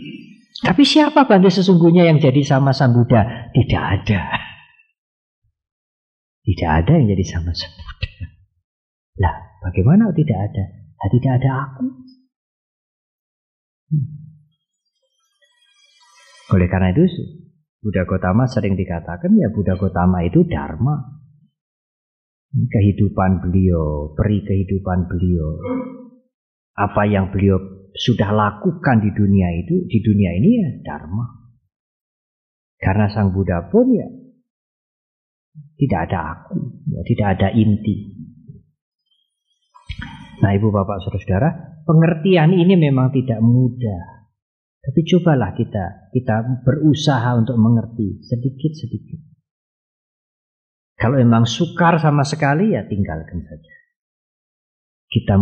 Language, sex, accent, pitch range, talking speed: English, male, Indonesian, 95-160 Hz, 105 wpm